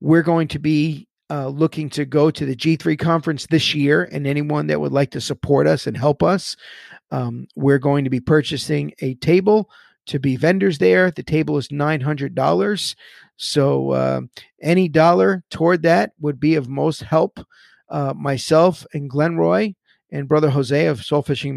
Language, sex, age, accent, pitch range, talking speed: English, male, 50-69, American, 140-160 Hz, 175 wpm